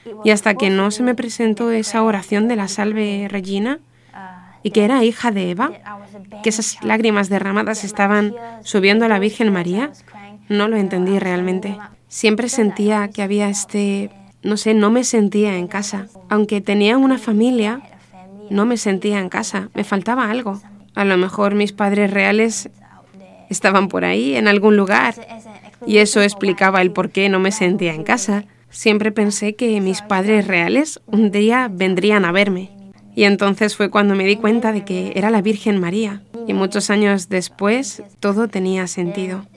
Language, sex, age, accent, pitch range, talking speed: Spanish, female, 20-39, Spanish, 195-215 Hz, 170 wpm